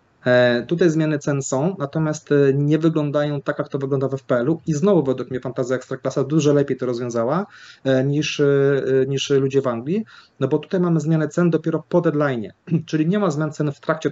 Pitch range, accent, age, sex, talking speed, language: 130-155 Hz, native, 30-49, male, 190 wpm, Polish